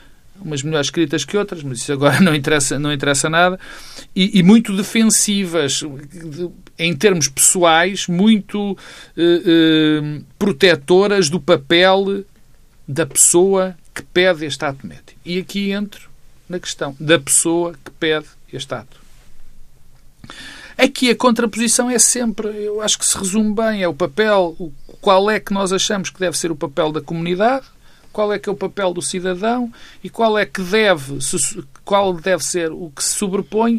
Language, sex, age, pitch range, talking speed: Portuguese, male, 50-69, 155-210 Hz, 155 wpm